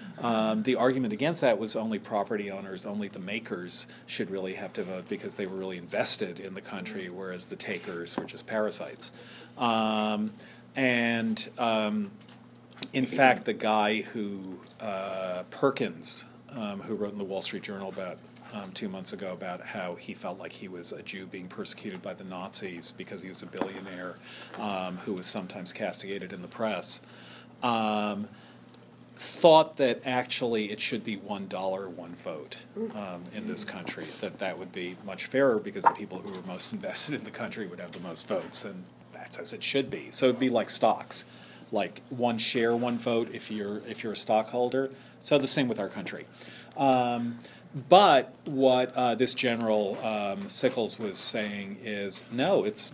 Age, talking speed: 40-59, 180 wpm